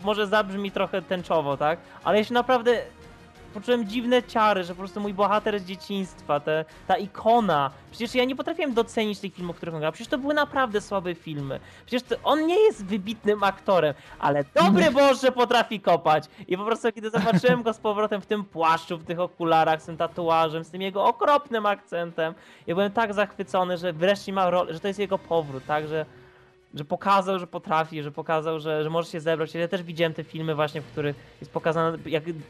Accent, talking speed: native, 200 wpm